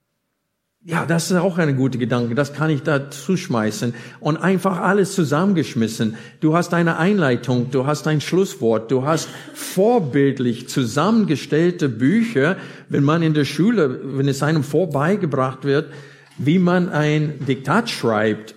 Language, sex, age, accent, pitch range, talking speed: German, male, 50-69, German, 125-175 Hz, 140 wpm